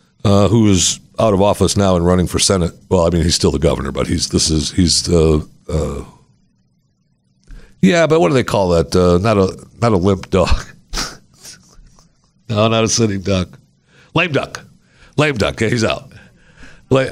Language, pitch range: English, 90-130 Hz